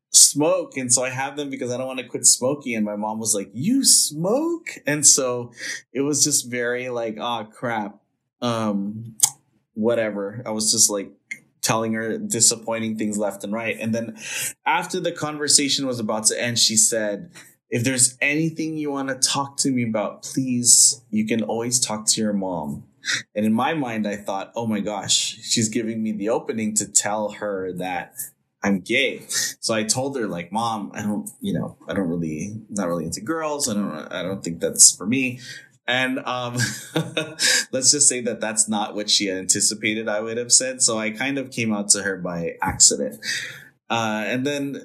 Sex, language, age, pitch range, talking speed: male, English, 20-39, 105-130 Hz, 195 wpm